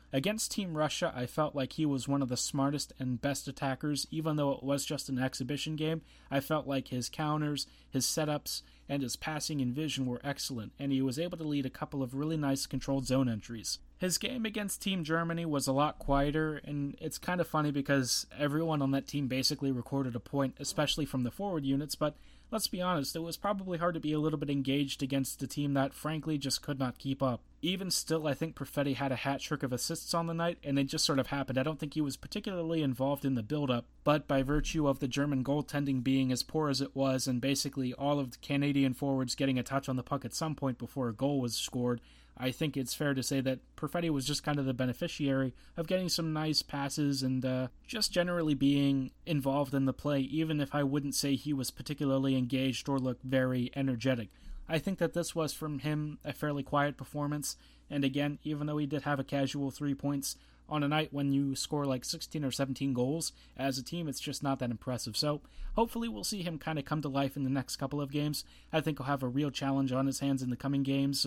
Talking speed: 235 wpm